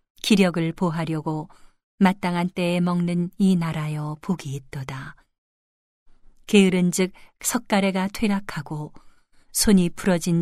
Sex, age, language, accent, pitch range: female, 40-59, Korean, native, 150-195 Hz